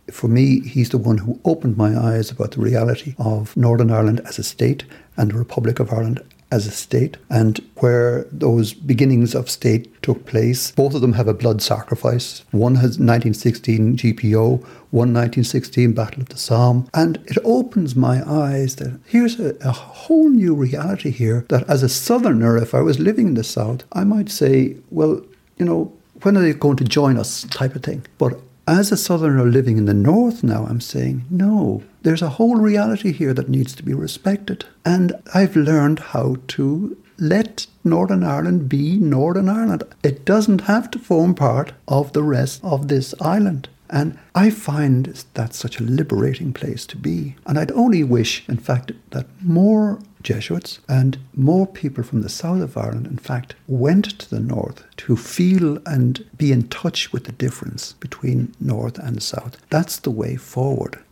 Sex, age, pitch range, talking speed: male, 60-79, 115-155 Hz, 185 wpm